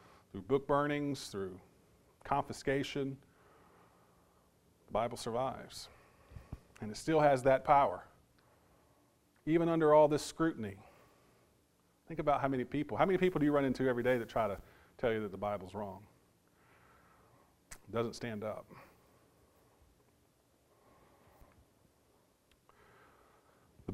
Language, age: English, 40-59